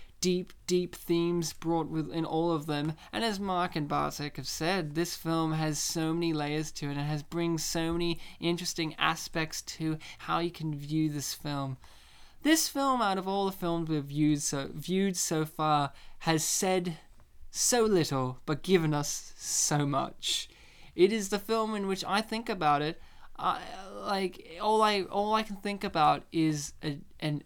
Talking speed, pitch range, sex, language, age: 180 wpm, 150-180 Hz, male, English, 20-39